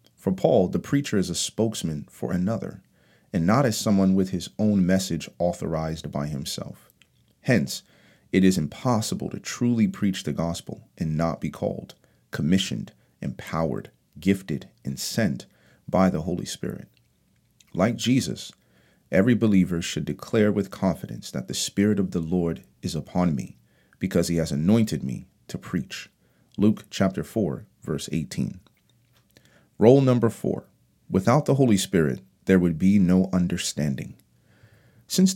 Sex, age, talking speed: male, 40-59, 145 wpm